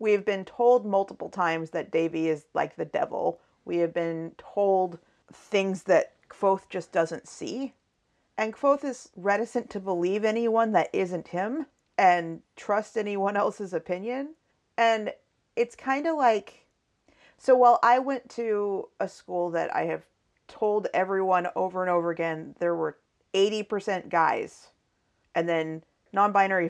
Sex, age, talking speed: female, 40-59, 145 wpm